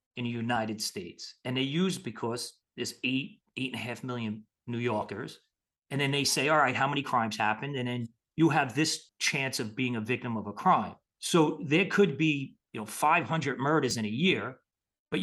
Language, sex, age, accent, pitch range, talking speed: English, male, 40-59, American, 110-150 Hz, 205 wpm